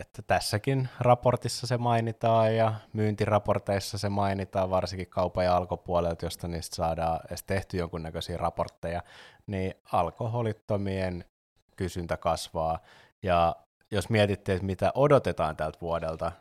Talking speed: 115 wpm